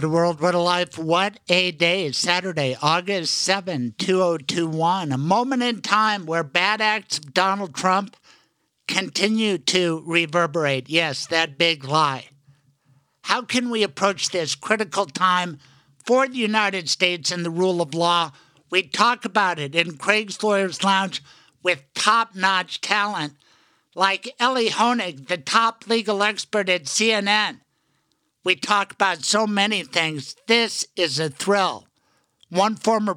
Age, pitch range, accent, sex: 60-79, 170-205 Hz, American, male